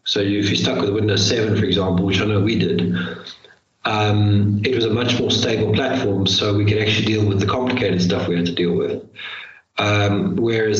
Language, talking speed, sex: English, 210 wpm, male